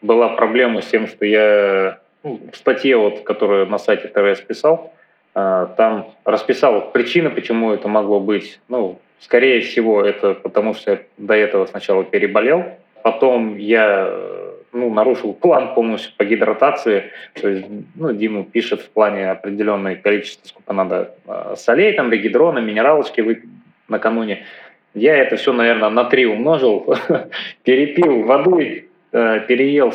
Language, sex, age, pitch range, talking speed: Russian, male, 20-39, 105-160 Hz, 130 wpm